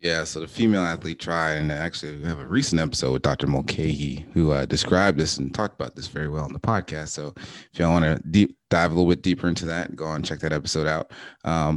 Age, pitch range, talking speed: 30-49, 75-85 Hz, 250 wpm